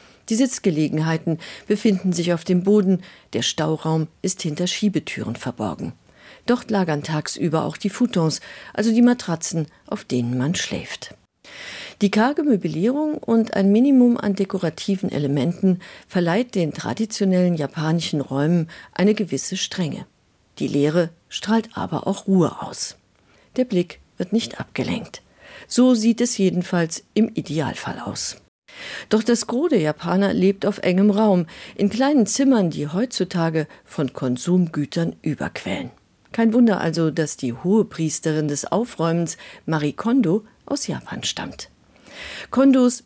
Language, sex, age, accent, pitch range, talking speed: German, female, 50-69, German, 160-225 Hz, 130 wpm